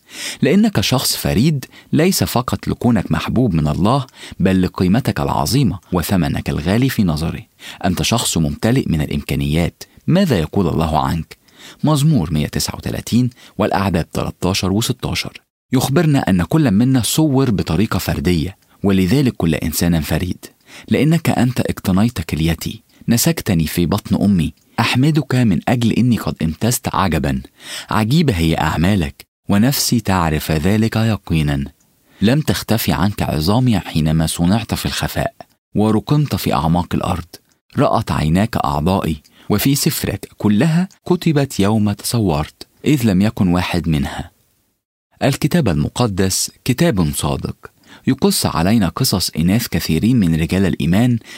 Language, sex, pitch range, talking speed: English, male, 80-125 Hz, 120 wpm